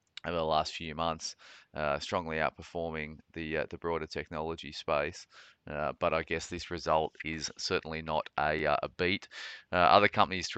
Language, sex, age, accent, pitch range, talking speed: English, male, 30-49, Australian, 80-95 Hz, 175 wpm